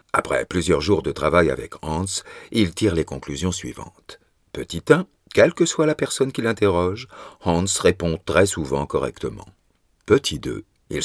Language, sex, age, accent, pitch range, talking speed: French, male, 50-69, French, 70-110 Hz, 155 wpm